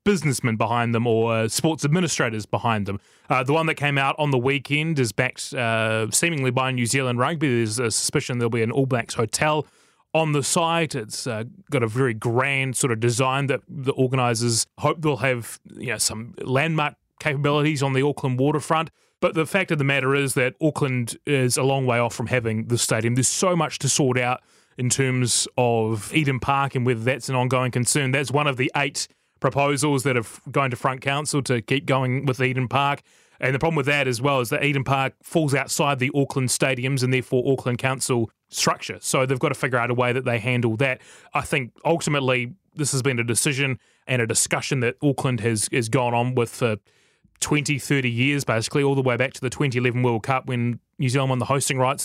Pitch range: 125-145 Hz